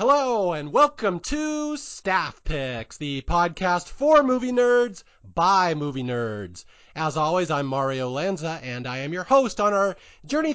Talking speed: 155 wpm